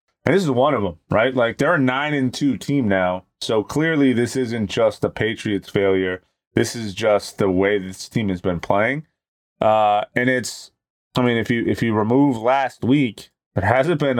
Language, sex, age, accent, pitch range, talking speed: English, male, 20-39, American, 95-125 Hz, 195 wpm